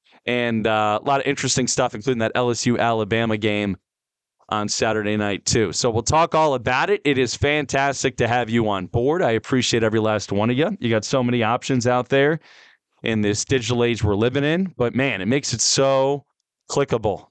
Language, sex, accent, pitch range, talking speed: English, male, American, 110-165 Hz, 200 wpm